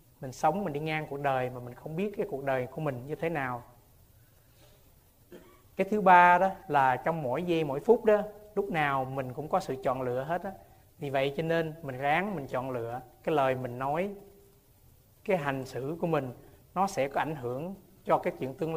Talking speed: 215 wpm